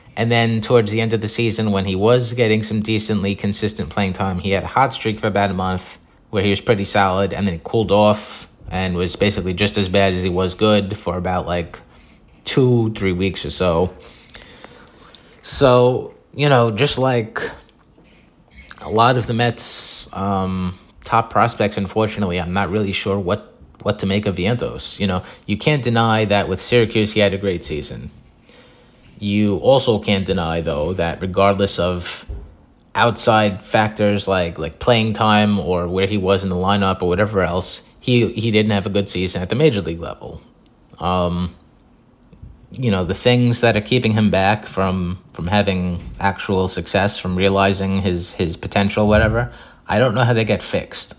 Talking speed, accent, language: 180 wpm, American, English